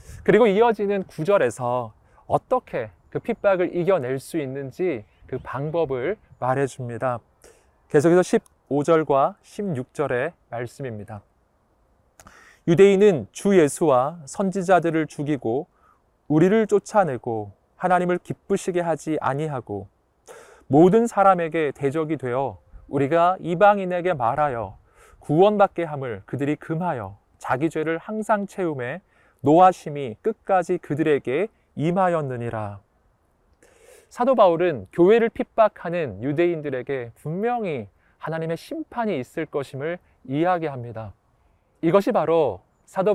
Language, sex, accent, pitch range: Korean, male, native, 125-185 Hz